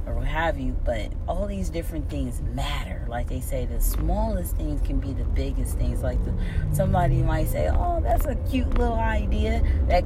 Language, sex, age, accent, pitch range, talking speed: English, female, 30-49, American, 75-85 Hz, 180 wpm